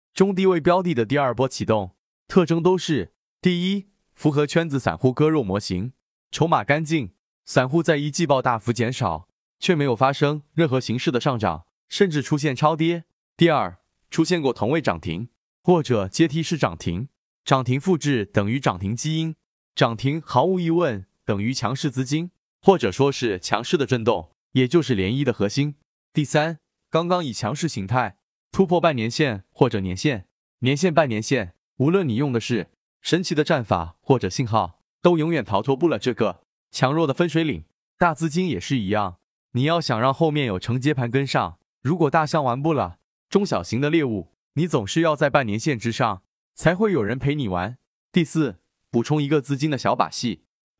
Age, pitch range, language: 20-39, 115-160 Hz, Chinese